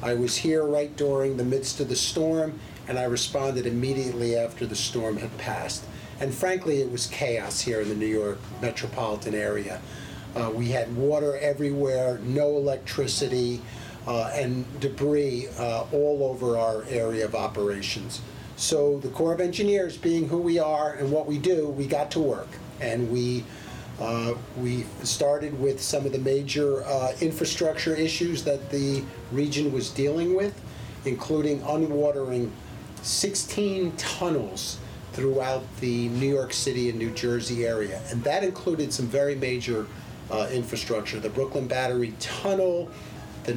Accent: American